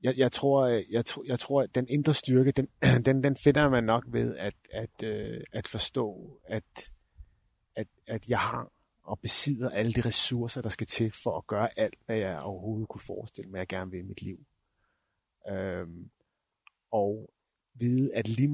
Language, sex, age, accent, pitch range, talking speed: Danish, male, 30-49, native, 95-125 Hz, 180 wpm